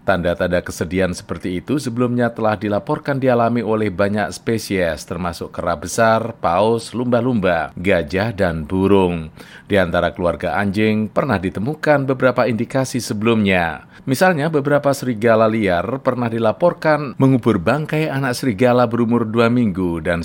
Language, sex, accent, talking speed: Indonesian, male, native, 125 wpm